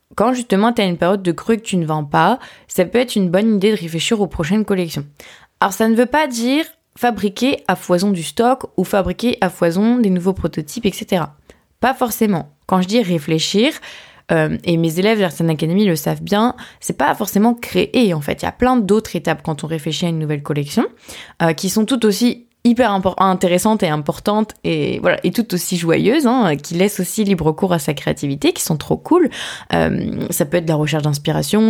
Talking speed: 215 wpm